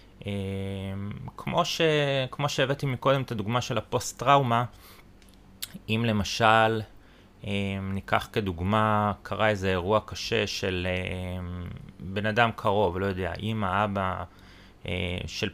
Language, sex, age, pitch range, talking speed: Hebrew, male, 30-49, 95-110 Hz, 105 wpm